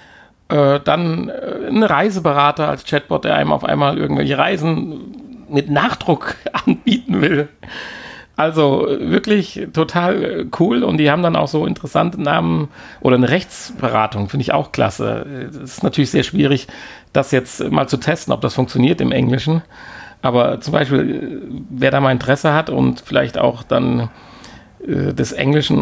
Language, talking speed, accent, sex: German, 145 wpm, German, male